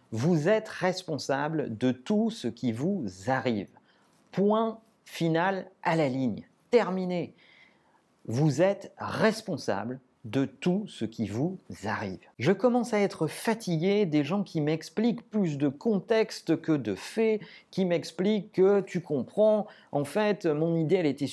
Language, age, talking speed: French, 40-59, 140 wpm